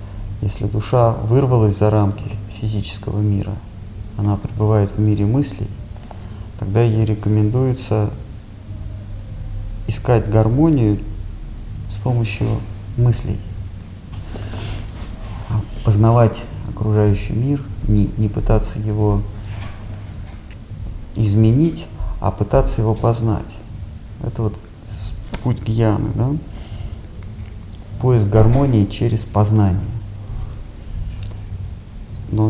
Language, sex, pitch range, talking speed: Russian, male, 100-115 Hz, 75 wpm